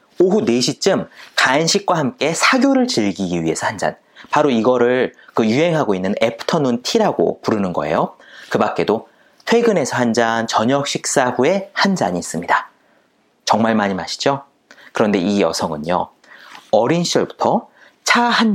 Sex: male